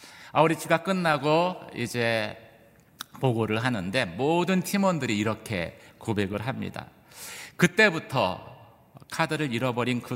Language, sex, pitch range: Korean, male, 115-160 Hz